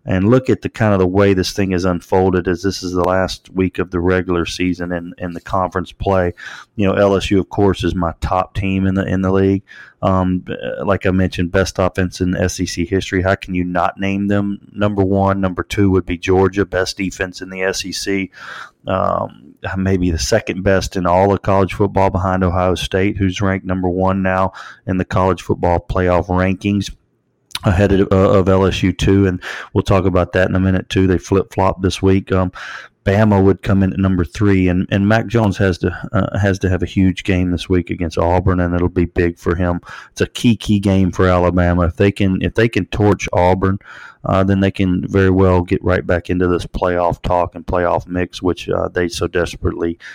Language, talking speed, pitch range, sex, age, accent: English, 210 wpm, 90-95 Hz, male, 30-49, American